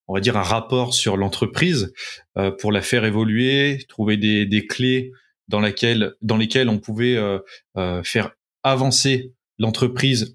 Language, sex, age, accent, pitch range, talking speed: French, male, 30-49, French, 105-130 Hz, 140 wpm